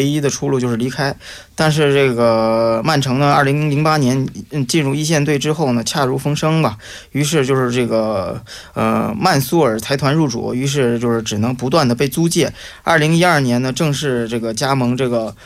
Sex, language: male, Korean